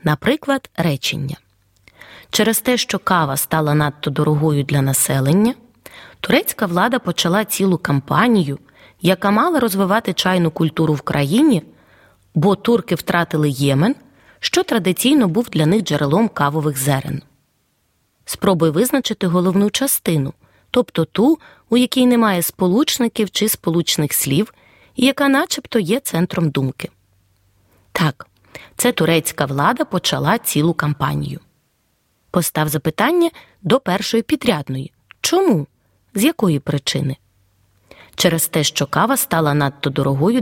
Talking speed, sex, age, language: 115 wpm, female, 20-39, Ukrainian